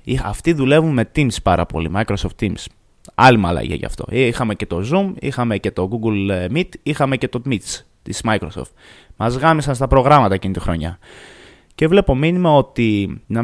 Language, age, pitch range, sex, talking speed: Greek, 20-39, 95-145 Hz, male, 175 wpm